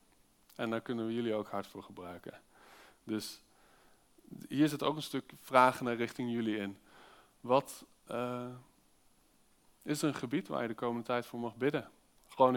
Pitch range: 115-155 Hz